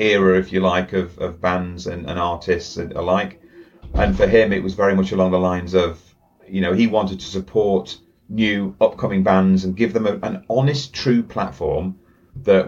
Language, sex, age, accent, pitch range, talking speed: English, male, 30-49, British, 90-115 Hz, 185 wpm